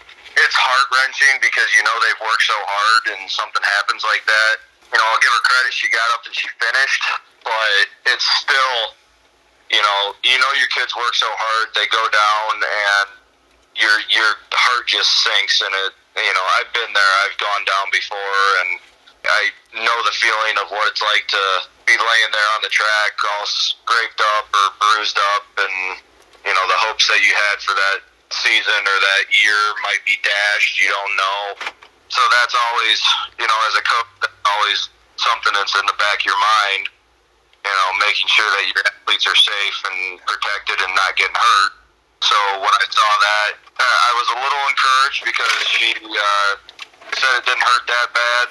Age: 30-49